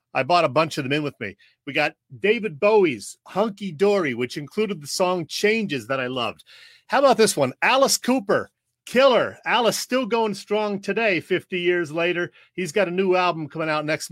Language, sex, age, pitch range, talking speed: English, male, 40-59, 145-195 Hz, 195 wpm